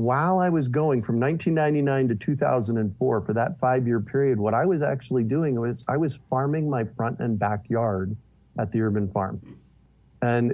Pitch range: 120-150 Hz